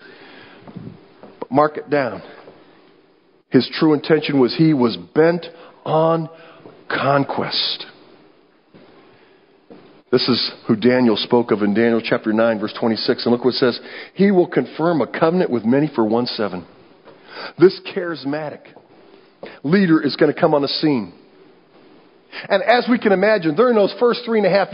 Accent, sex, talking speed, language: American, male, 150 wpm, English